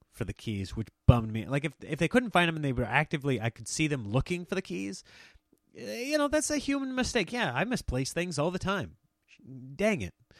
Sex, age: male, 30-49